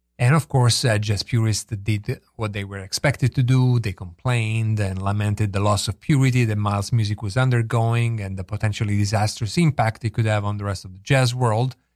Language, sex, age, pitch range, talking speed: English, male, 40-59, 100-120 Hz, 205 wpm